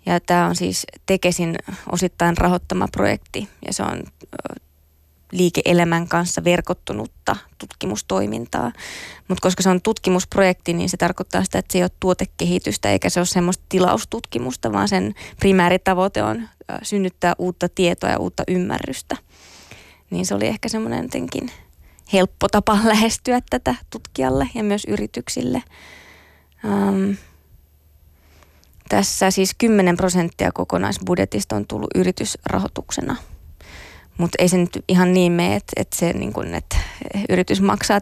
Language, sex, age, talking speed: Finnish, female, 20-39, 120 wpm